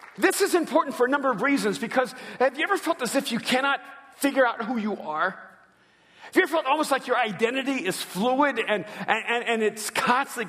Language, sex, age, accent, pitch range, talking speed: English, male, 50-69, American, 235-315 Hz, 210 wpm